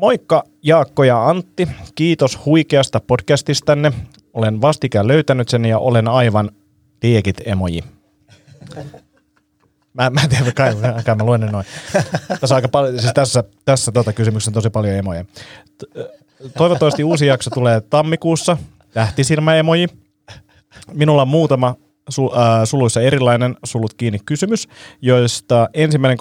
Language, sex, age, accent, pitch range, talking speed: Finnish, male, 30-49, native, 110-140 Hz, 125 wpm